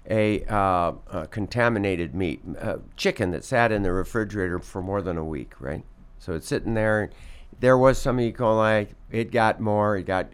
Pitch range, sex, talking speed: 90-120 Hz, male, 185 wpm